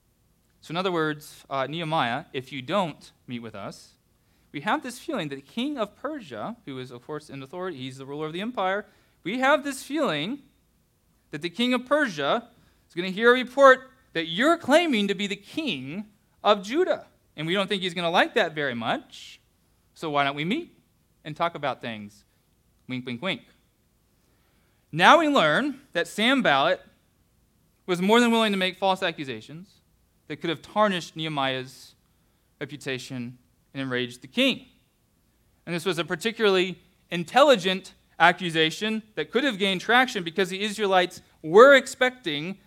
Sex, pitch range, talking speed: male, 140-230 Hz, 170 wpm